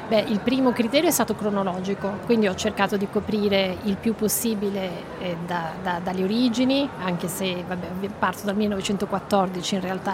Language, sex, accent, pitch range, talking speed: Italian, female, native, 185-215 Hz, 140 wpm